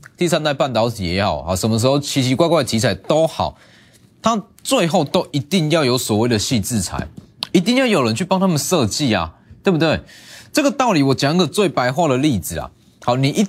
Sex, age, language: male, 20-39, Chinese